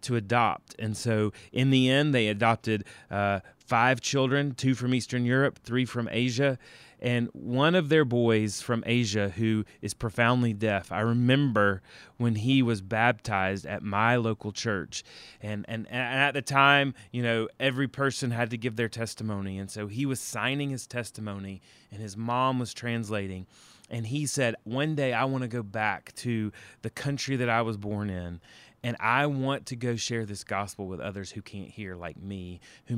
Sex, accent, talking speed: male, American, 180 wpm